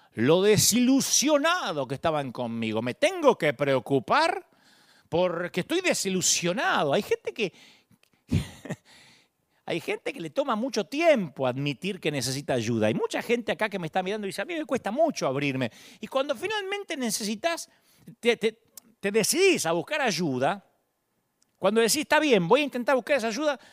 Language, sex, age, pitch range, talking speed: Spanish, male, 40-59, 150-230 Hz, 155 wpm